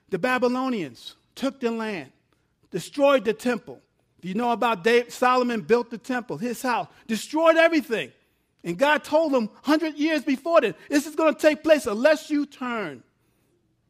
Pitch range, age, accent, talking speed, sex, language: 215-290 Hz, 50-69, American, 155 wpm, male, English